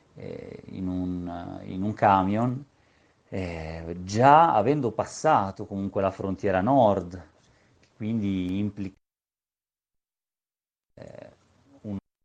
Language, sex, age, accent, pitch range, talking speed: Italian, male, 40-59, native, 90-110 Hz, 80 wpm